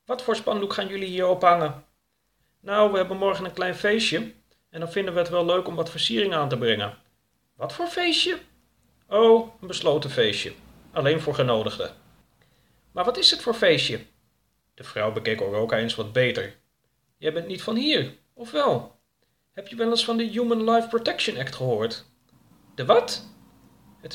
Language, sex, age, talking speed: Dutch, male, 40-59, 175 wpm